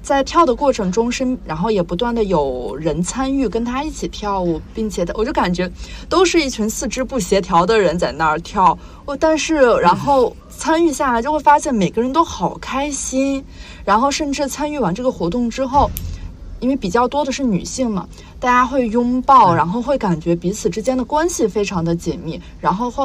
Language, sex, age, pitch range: Chinese, female, 30-49, 175-245 Hz